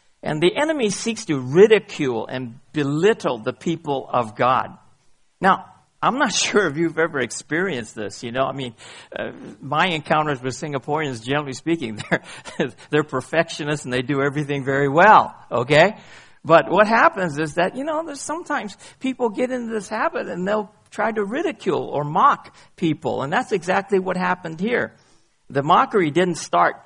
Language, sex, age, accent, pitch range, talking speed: English, male, 50-69, American, 135-205 Hz, 165 wpm